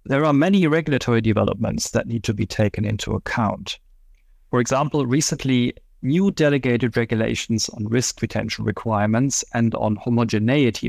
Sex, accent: male, German